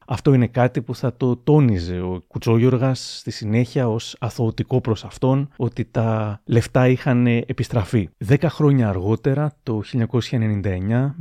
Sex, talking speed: male, 135 wpm